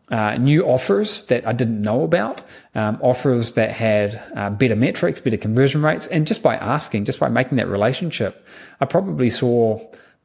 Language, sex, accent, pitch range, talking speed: English, male, Australian, 110-130 Hz, 180 wpm